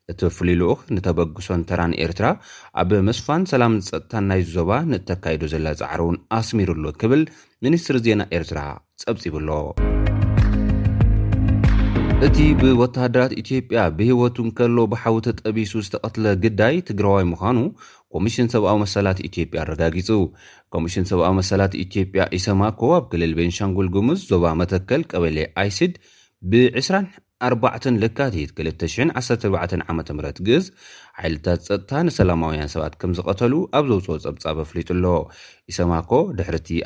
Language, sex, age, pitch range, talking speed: Amharic, male, 30-49, 85-115 Hz, 105 wpm